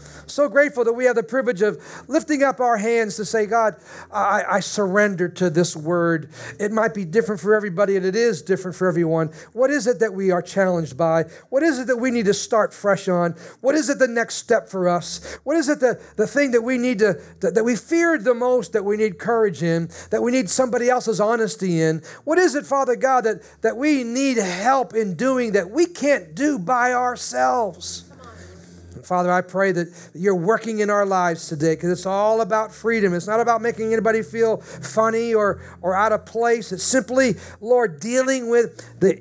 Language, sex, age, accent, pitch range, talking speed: English, male, 50-69, American, 180-250 Hz, 210 wpm